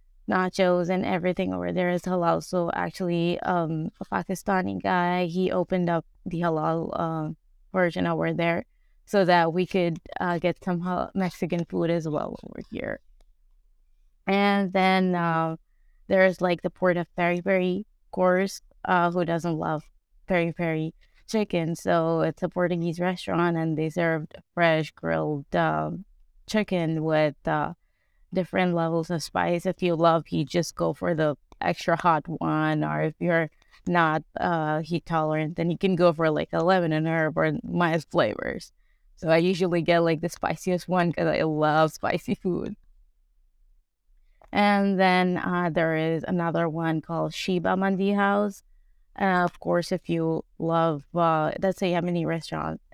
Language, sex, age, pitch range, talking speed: English, female, 20-39, 160-180 Hz, 160 wpm